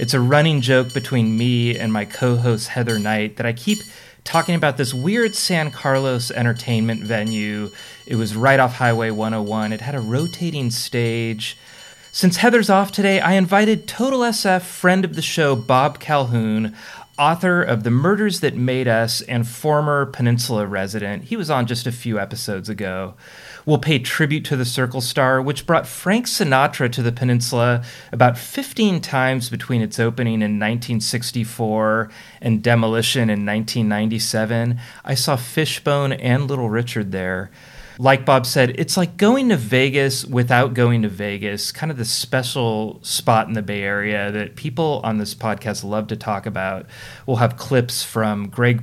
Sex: male